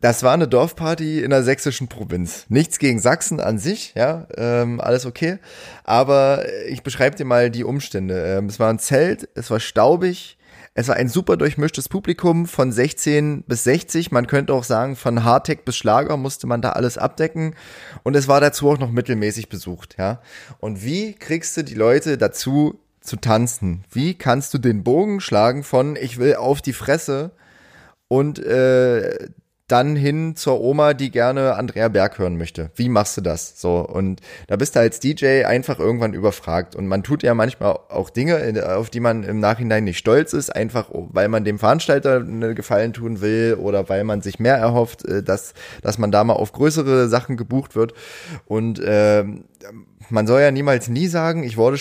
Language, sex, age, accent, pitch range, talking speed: German, male, 30-49, German, 110-140 Hz, 185 wpm